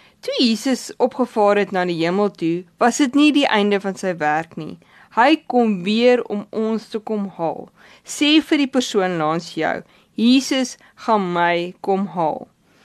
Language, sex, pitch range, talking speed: English, female, 185-255 Hz, 165 wpm